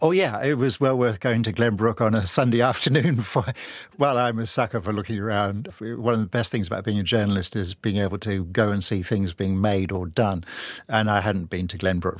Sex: male